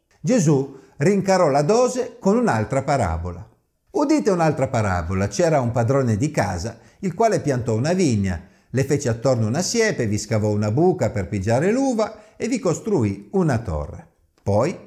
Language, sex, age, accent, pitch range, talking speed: Italian, male, 50-69, native, 115-175 Hz, 155 wpm